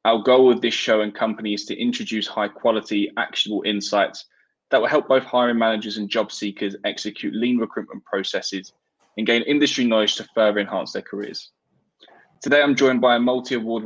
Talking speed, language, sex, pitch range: 180 wpm, English, male, 105-125 Hz